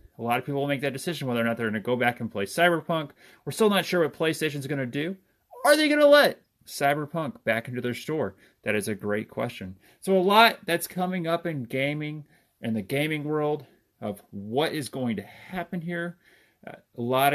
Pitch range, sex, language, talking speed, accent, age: 115-155 Hz, male, English, 225 wpm, American, 30-49